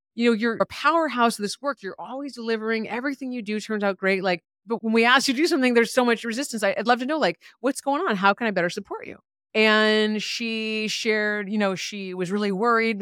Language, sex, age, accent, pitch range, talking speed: English, female, 30-49, American, 175-235 Hz, 250 wpm